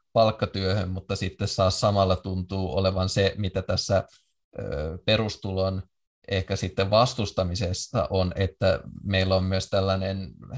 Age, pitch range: 20-39, 95-110 Hz